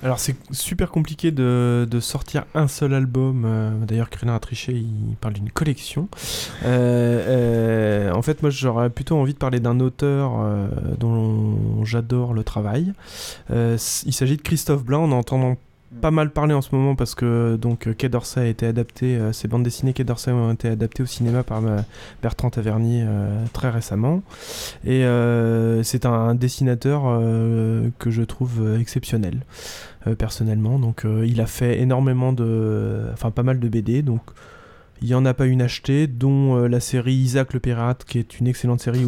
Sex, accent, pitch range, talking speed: male, French, 115-135 Hz, 190 wpm